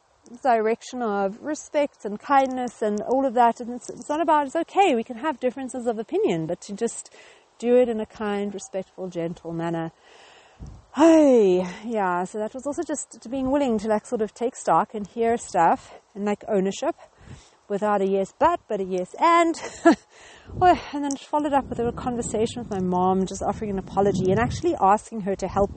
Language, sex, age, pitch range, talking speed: English, female, 40-59, 200-275 Hz, 190 wpm